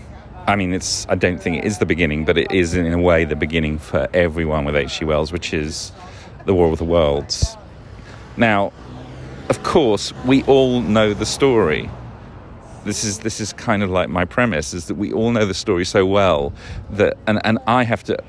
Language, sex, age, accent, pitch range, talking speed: English, male, 40-59, British, 90-125 Hz, 205 wpm